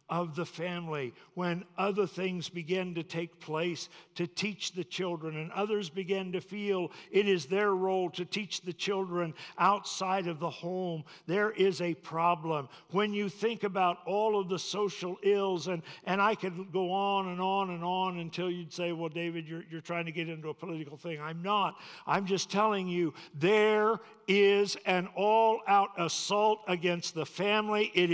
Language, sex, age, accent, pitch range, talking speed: English, male, 60-79, American, 165-195 Hz, 175 wpm